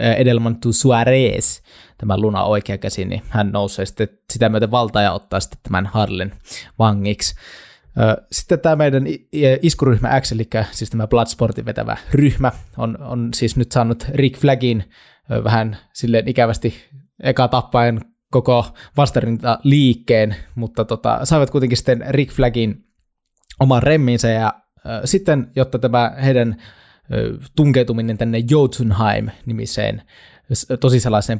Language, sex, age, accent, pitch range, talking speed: Finnish, male, 20-39, native, 110-130 Hz, 120 wpm